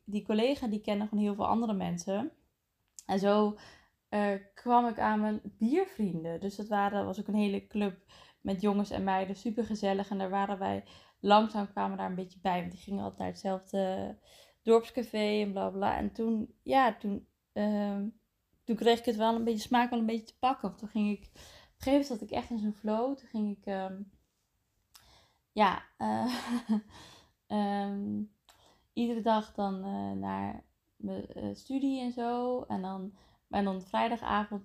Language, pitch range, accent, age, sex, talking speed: Dutch, 190-225 Hz, Dutch, 20-39, female, 180 wpm